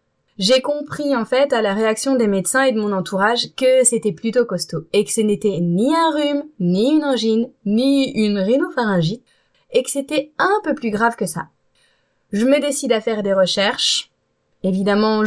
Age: 20-39